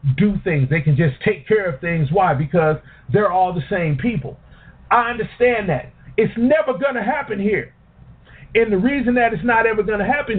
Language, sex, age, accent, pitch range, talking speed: English, male, 40-59, American, 140-200 Hz, 200 wpm